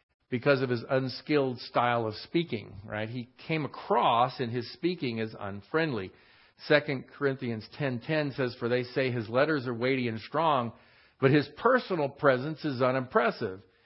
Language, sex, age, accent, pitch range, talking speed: English, male, 50-69, American, 115-145 Hz, 160 wpm